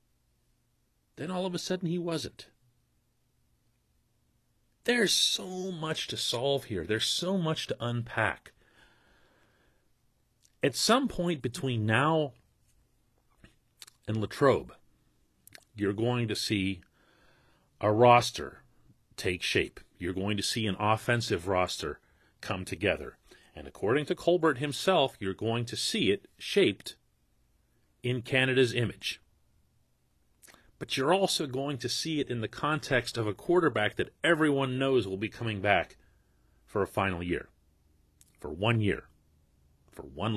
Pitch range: 95-160 Hz